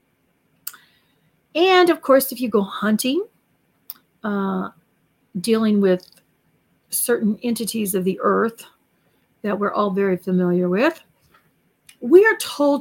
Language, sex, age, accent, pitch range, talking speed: English, female, 40-59, American, 215-275 Hz, 110 wpm